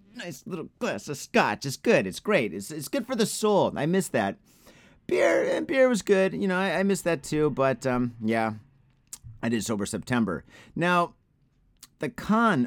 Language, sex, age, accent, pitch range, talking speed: English, male, 30-49, American, 120-185 Hz, 190 wpm